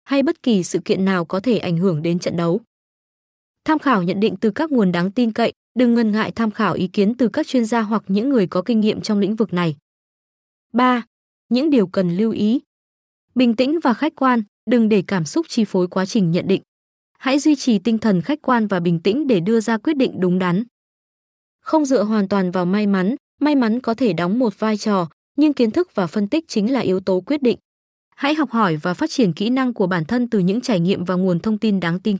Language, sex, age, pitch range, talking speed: Vietnamese, female, 20-39, 190-250 Hz, 240 wpm